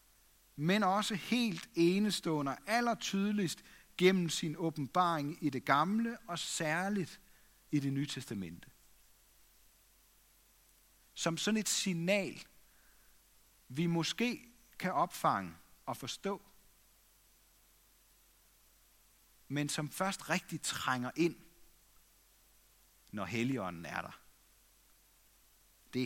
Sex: male